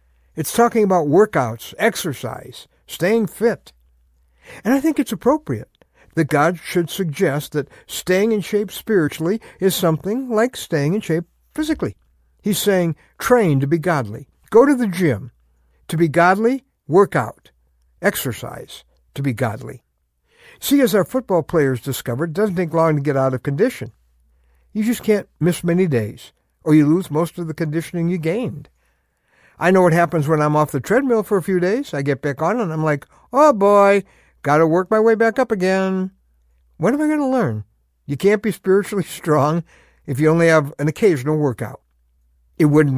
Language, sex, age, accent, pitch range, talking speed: English, male, 60-79, American, 135-200 Hz, 175 wpm